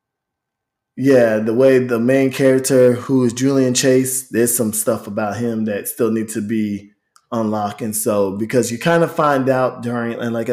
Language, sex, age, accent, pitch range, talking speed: English, male, 20-39, American, 110-145 Hz, 175 wpm